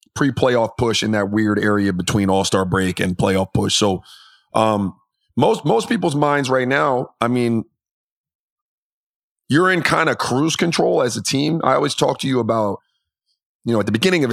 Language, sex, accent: English, male, American